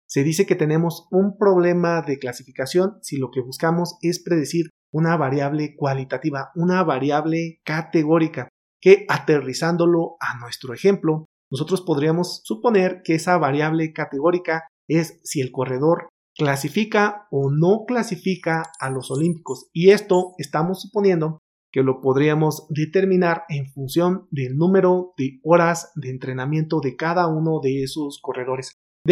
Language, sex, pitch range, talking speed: Spanish, male, 135-175 Hz, 135 wpm